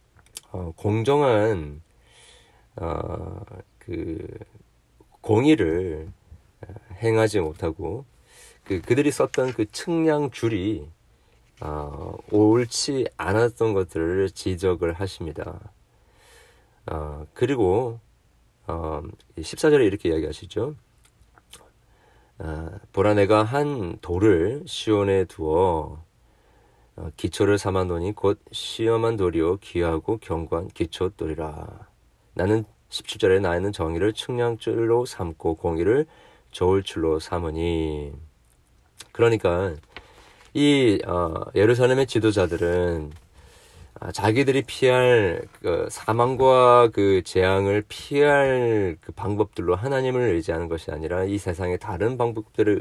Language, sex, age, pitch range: Korean, male, 40-59, 85-115 Hz